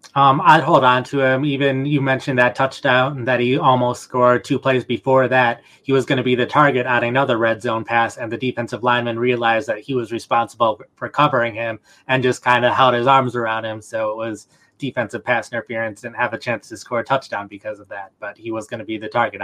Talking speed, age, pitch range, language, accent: 240 wpm, 20-39, 115-135 Hz, English, American